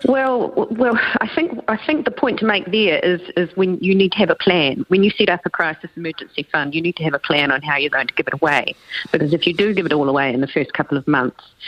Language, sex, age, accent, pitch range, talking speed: English, female, 40-59, Australian, 140-175 Hz, 290 wpm